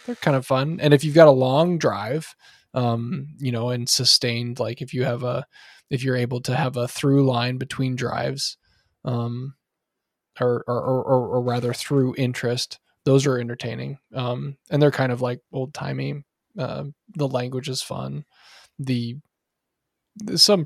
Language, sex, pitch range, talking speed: English, male, 125-150 Hz, 165 wpm